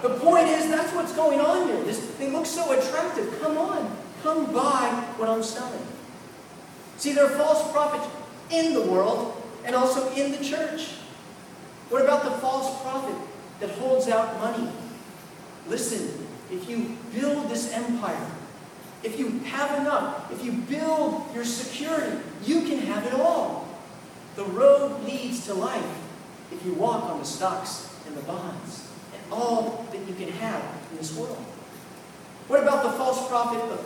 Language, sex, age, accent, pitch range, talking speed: English, male, 40-59, American, 200-285 Hz, 160 wpm